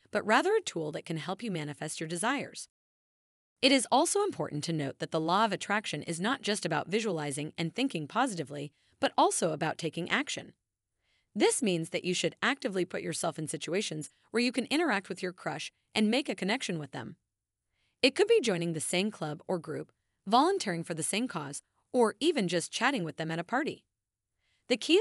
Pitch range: 160-235 Hz